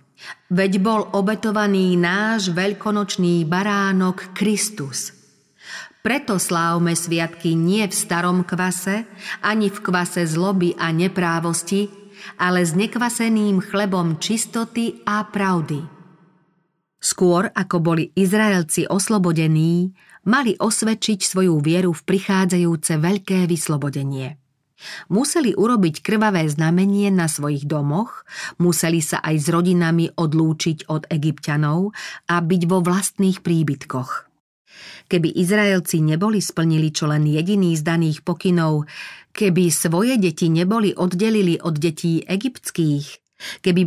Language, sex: Slovak, female